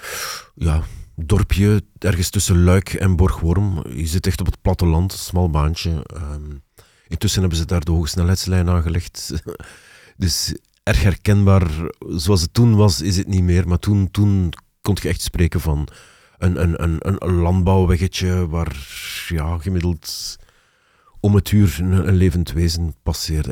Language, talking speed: Dutch, 145 wpm